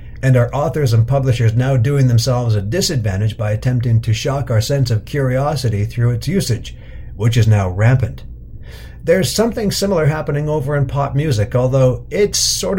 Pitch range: 110-140 Hz